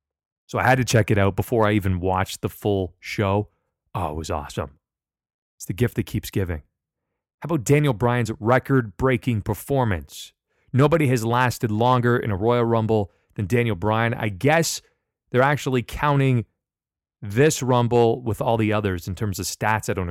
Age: 30-49